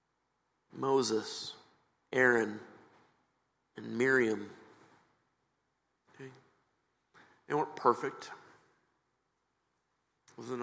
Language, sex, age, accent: English, male, 50-69, American